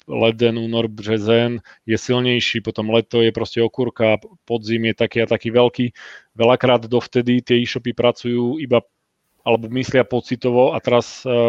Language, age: Czech, 30-49